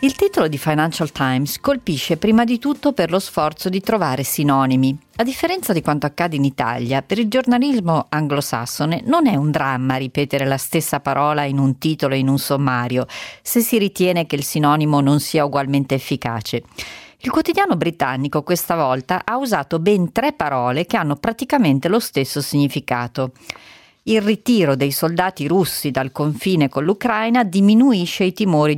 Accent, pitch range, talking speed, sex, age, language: native, 135-185 Hz, 165 wpm, female, 40-59, Italian